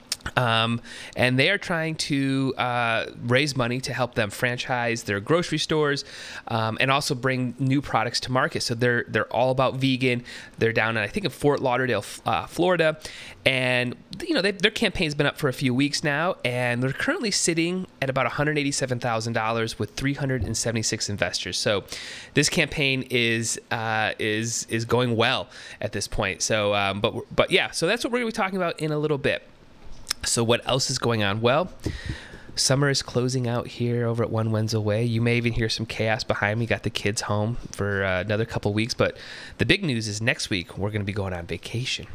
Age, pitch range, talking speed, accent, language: 30-49, 110-135 Hz, 210 wpm, American, English